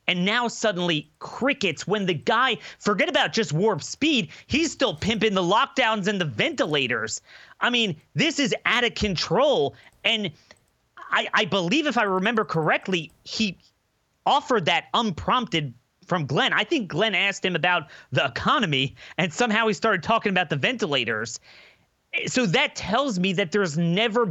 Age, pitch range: 30-49, 165-230 Hz